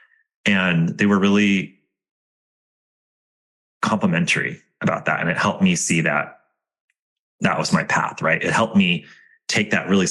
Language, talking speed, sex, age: English, 140 wpm, male, 30-49